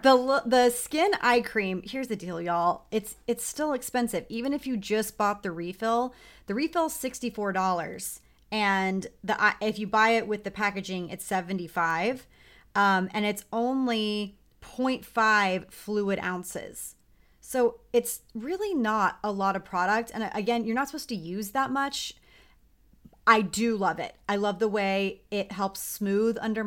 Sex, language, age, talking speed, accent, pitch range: female, English, 30-49, 155 wpm, American, 190-235 Hz